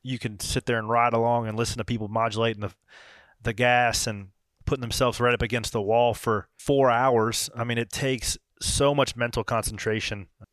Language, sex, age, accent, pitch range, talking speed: English, male, 30-49, American, 105-125 Hz, 195 wpm